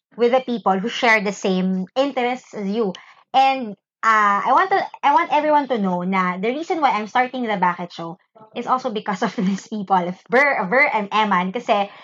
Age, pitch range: 20-39, 205-310 Hz